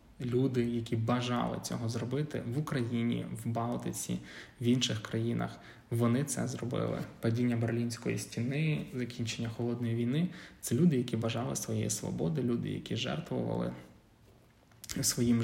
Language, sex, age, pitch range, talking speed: Ukrainian, male, 20-39, 115-125 Hz, 125 wpm